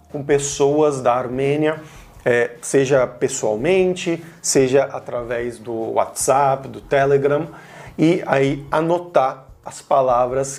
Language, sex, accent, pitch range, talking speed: Portuguese, male, Brazilian, 130-165 Hz, 95 wpm